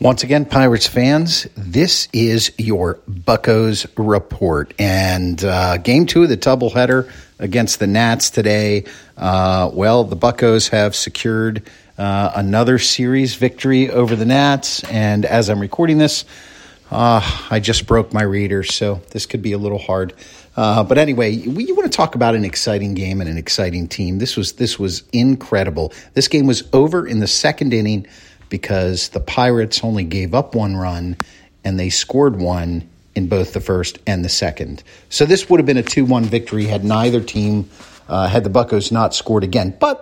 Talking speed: 175 wpm